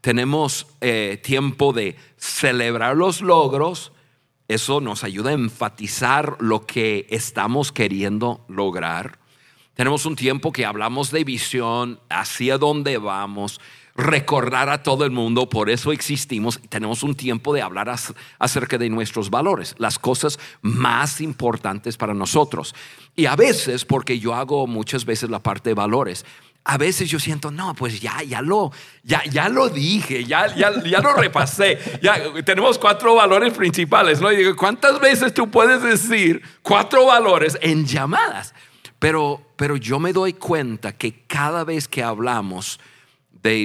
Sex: male